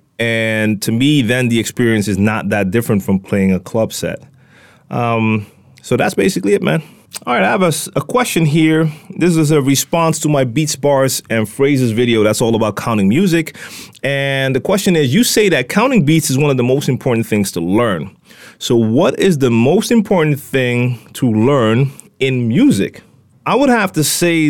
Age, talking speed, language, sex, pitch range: 30-49, 195 wpm, English, male, 110-150 Hz